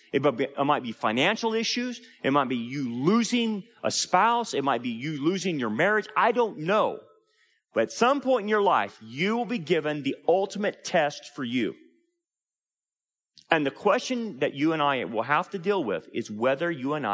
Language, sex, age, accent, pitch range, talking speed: English, male, 30-49, American, 140-220 Hz, 190 wpm